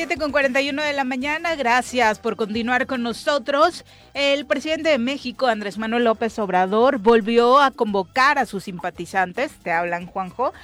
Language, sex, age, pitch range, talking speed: Spanish, female, 40-59, 200-255 Hz, 160 wpm